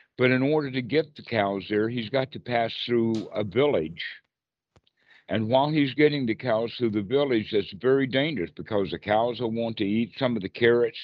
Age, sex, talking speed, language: 60-79, male, 205 wpm, English